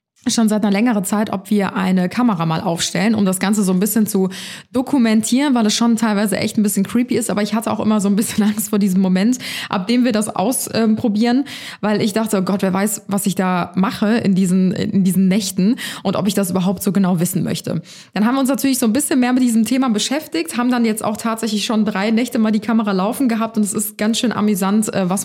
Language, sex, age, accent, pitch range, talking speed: German, female, 20-39, German, 190-230 Hz, 245 wpm